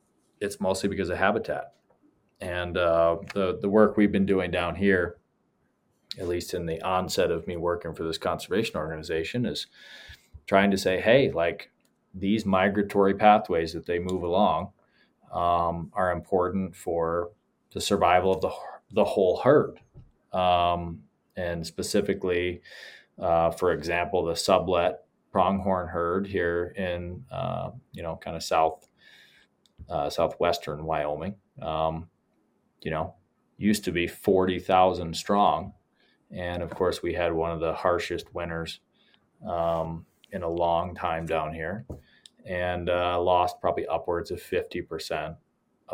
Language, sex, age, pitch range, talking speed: English, male, 20-39, 85-95 Hz, 135 wpm